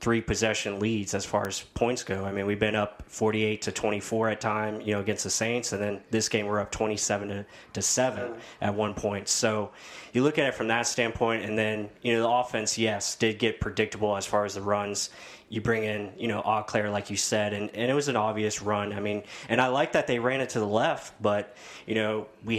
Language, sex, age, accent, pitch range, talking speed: English, male, 20-39, American, 105-115 Hz, 240 wpm